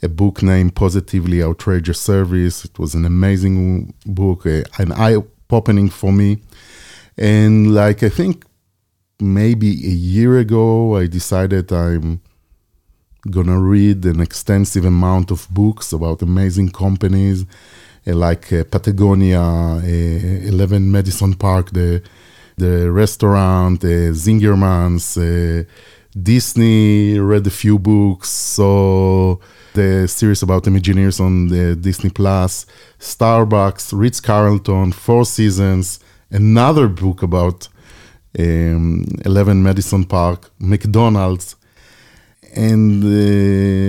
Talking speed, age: 110 wpm, 30-49